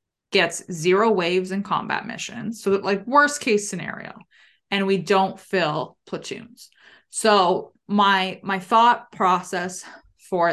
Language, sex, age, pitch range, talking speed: English, female, 20-39, 175-210 Hz, 125 wpm